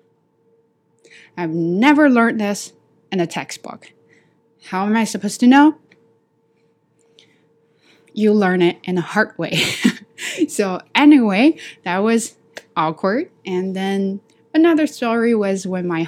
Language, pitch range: Chinese, 160-210 Hz